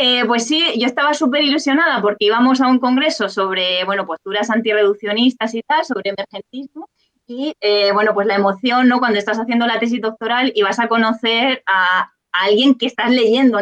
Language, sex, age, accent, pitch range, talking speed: Spanish, female, 20-39, Spanish, 205-265 Hz, 190 wpm